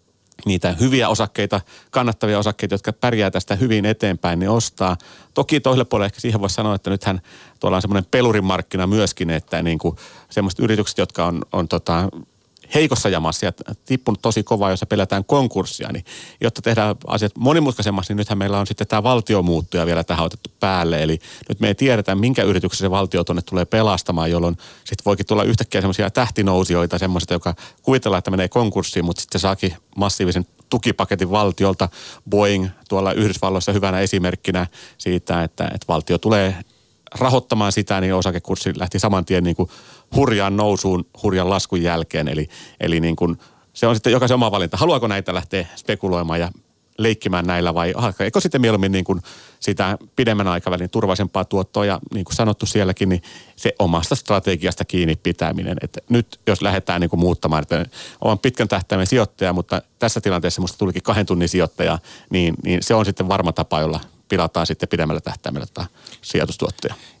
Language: Finnish